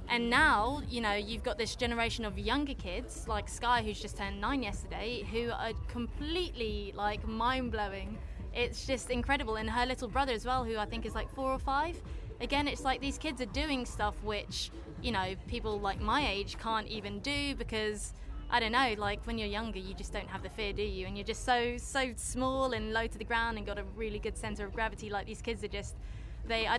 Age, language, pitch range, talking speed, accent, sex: 20-39, English, 215-250 Hz, 225 wpm, British, female